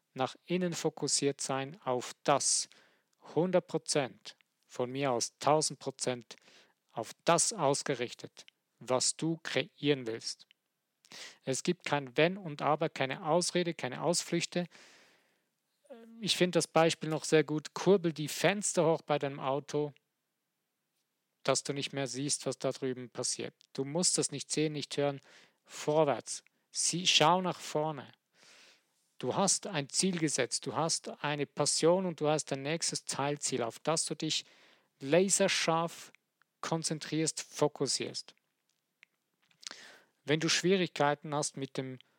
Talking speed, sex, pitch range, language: 130 wpm, male, 140-170 Hz, German